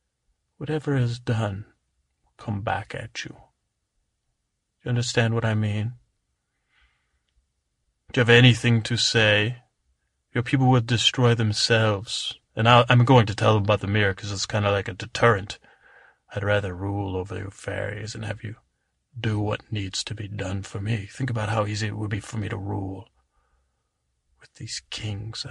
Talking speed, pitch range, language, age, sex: 170 wpm, 95-120 Hz, English, 30-49, male